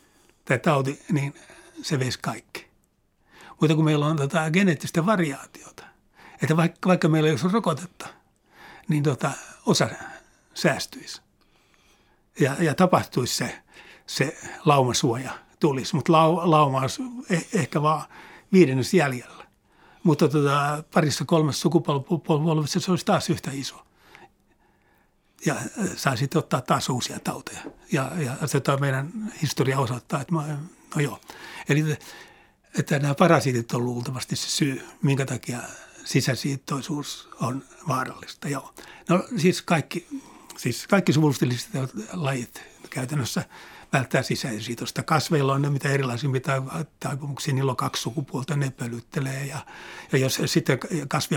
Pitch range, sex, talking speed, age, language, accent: 135-165 Hz, male, 125 wpm, 60-79, Finnish, native